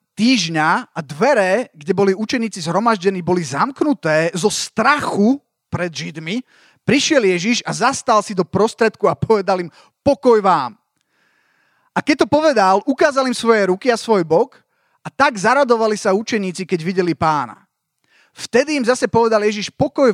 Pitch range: 165-230 Hz